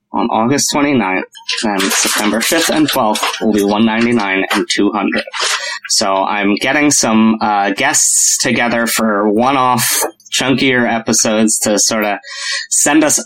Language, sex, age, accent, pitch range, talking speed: English, male, 20-39, American, 105-120 Hz, 130 wpm